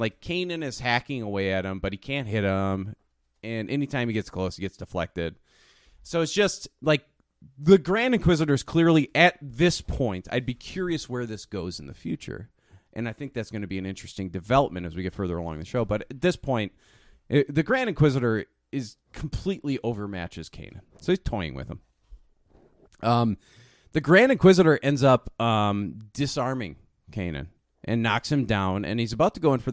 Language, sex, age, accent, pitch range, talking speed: English, male, 30-49, American, 100-145 Hz, 190 wpm